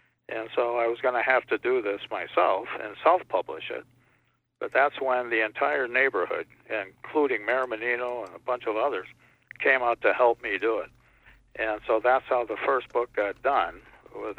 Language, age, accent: English, 60-79, American